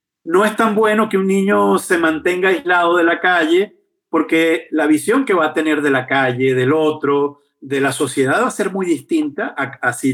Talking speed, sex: 215 wpm, male